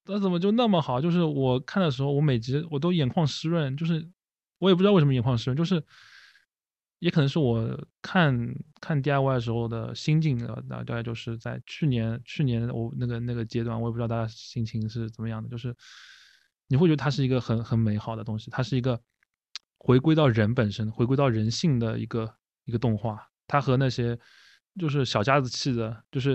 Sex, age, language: male, 20-39, Chinese